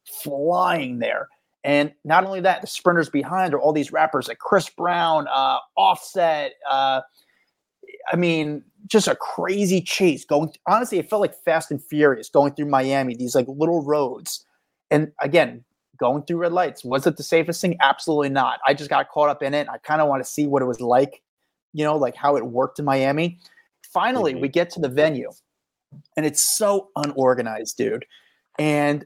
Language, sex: English, male